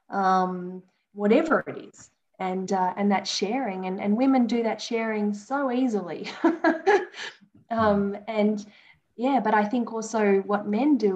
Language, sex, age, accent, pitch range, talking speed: English, female, 10-29, Australian, 190-240 Hz, 145 wpm